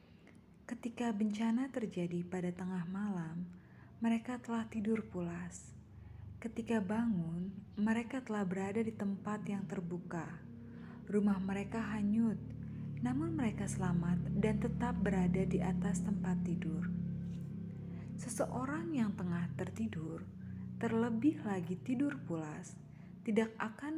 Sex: female